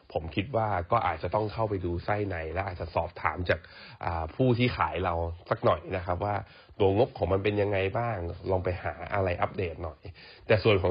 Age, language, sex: 20-39, Thai, male